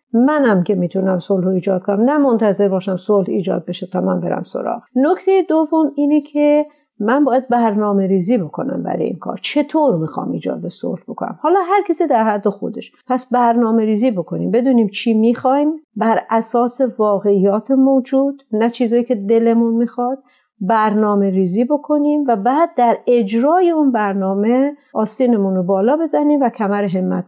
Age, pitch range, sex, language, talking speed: 50-69, 205-270 Hz, female, Persian, 155 wpm